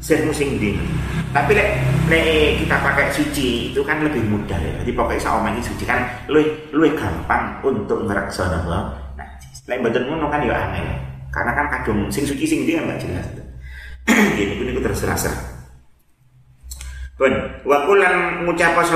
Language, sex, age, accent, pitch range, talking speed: Indonesian, male, 30-49, native, 95-135 Hz, 160 wpm